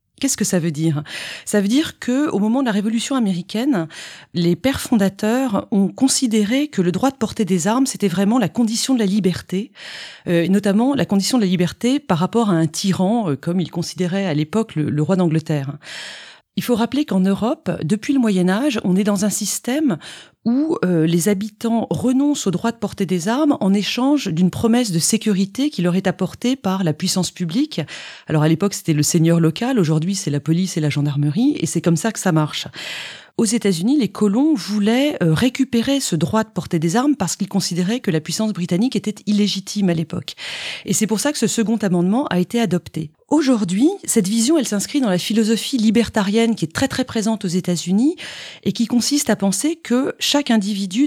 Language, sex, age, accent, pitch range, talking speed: French, female, 40-59, French, 180-240 Hz, 205 wpm